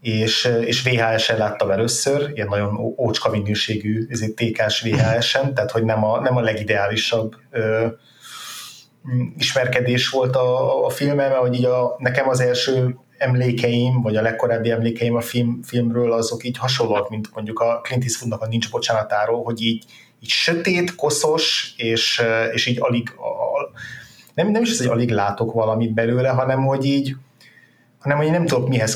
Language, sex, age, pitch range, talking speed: Hungarian, male, 30-49, 110-125 Hz, 160 wpm